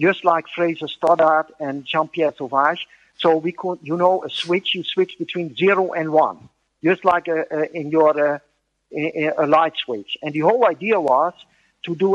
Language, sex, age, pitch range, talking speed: English, male, 50-69, 145-175 Hz, 185 wpm